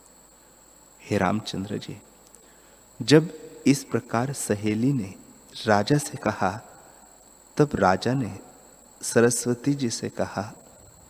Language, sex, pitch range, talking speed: Hindi, male, 105-125 Hz, 90 wpm